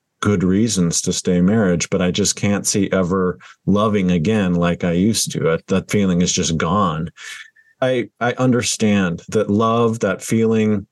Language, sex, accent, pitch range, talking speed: English, male, American, 95-120 Hz, 160 wpm